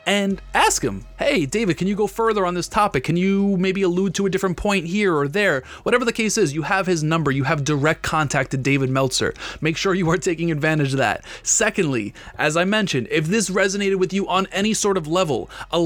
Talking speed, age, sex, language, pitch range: 230 wpm, 20-39, male, English, 145-190 Hz